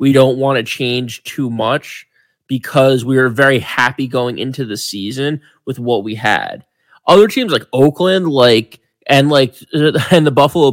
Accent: American